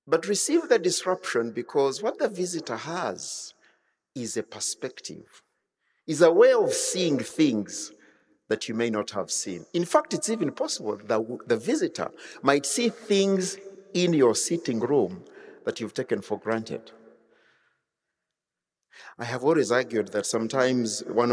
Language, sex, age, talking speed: English, male, 50-69, 145 wpm